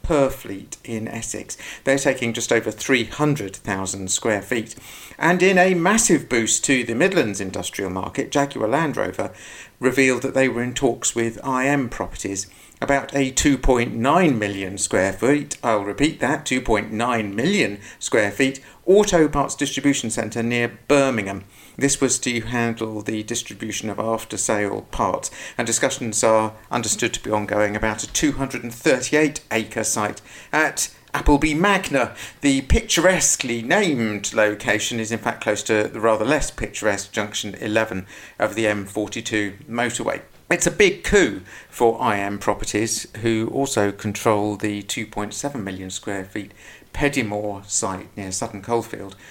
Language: English